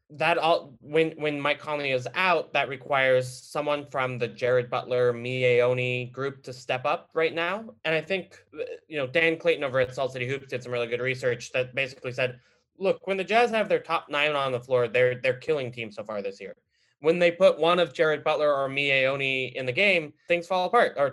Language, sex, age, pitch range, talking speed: English, male, 20-39, 125-165 Hz, 220 wpm